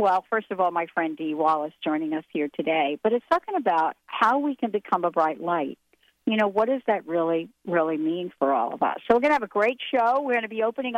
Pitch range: 175-245 Hz